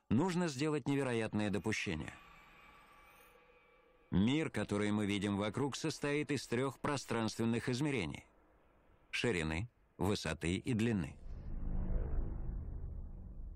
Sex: male